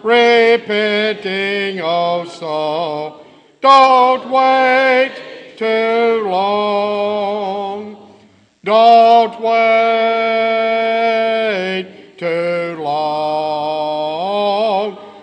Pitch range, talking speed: 195-235 Hz, 55 wpm